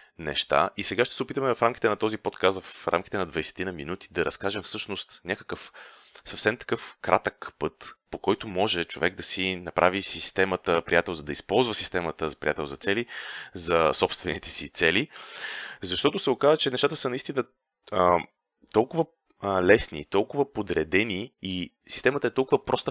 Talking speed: 160 wpm